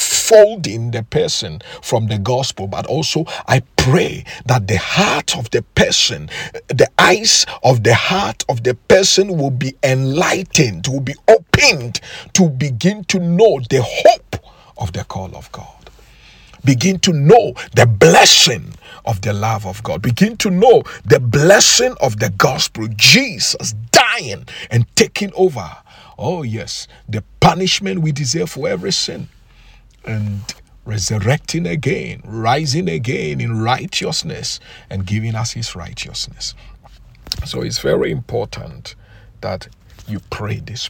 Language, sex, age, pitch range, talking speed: English, male, 50-69, 110-155 Hz, 135 wpm